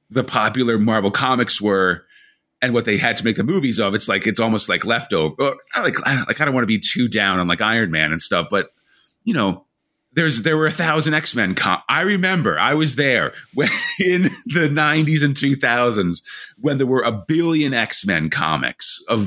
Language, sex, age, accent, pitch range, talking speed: English, male, 30-49, American, 100-150 Hz, 205 wpm